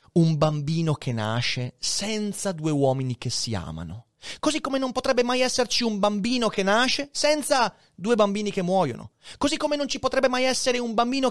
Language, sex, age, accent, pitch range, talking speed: Italian, male, 30-49, native, 135-220 Hz, 180 wpm